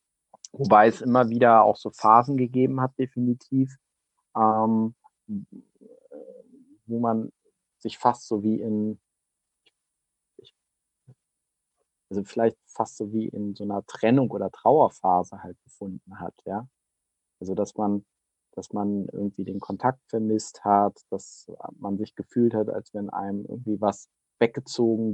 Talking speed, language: 130 wpm, German